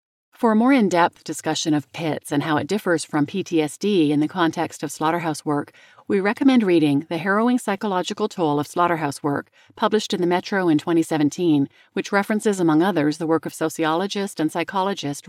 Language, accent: English, American